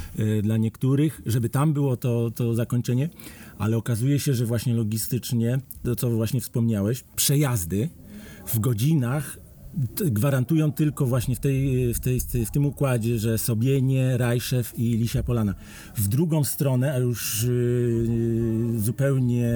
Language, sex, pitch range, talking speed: Polish, male, 110-130 Hz, 125 wpm